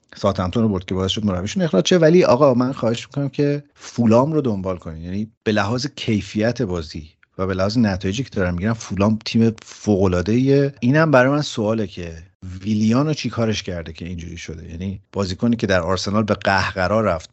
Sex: male